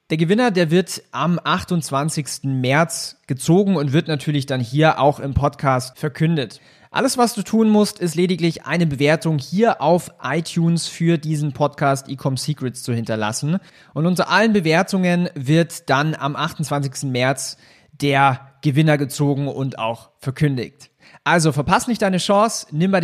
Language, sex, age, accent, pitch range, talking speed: German, male, 30-49, German, 140-170 Hz, 150 wpm